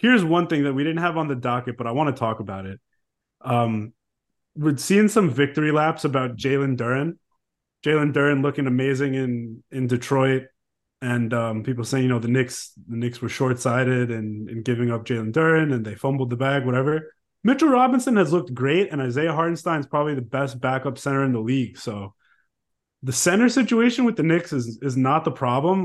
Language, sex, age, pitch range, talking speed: English, male, 20-39, 125-170 Hz, 200 wpm